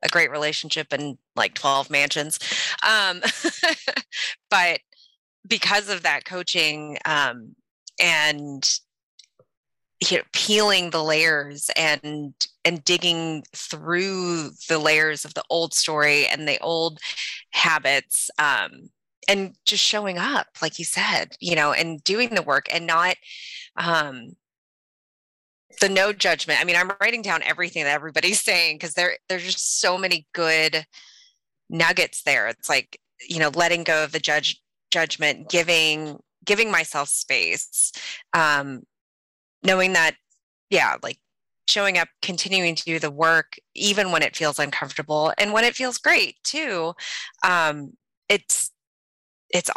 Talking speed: 135 wpm